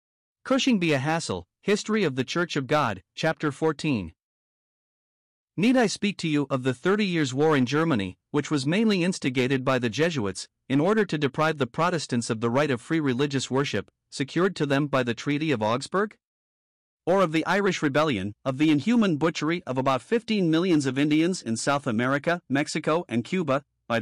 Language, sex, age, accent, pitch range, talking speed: English, male, 50-69, American, 130-170 Hz, 185 wpm